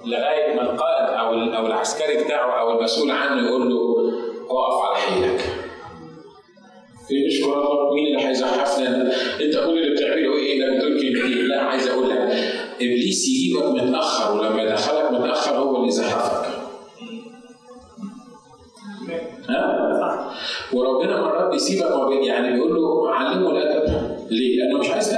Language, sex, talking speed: Arabic, male, 125 wpm